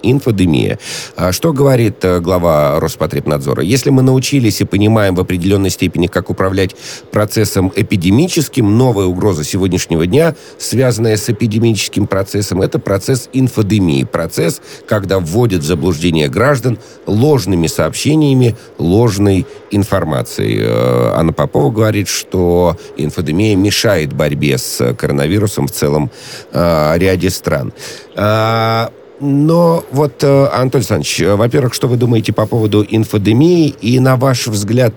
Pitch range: 90-130 Hz